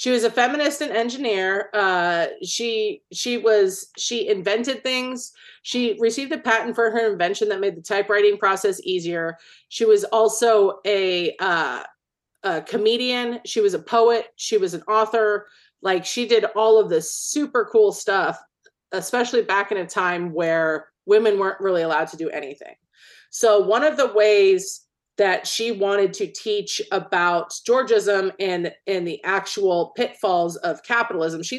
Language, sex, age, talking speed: English, female, 30-49, 160 wpm